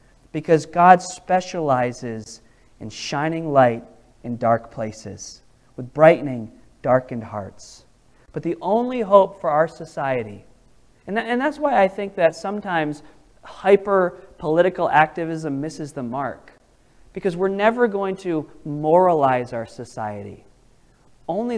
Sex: male